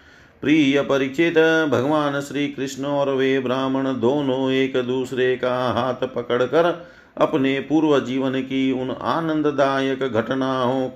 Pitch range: 125-140 Hz